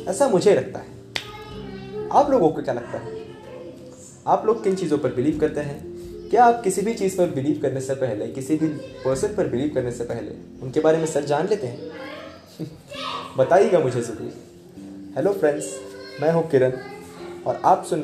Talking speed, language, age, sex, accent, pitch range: 180 wpm, Hindi, 20-39, male, native, 120-165 Hz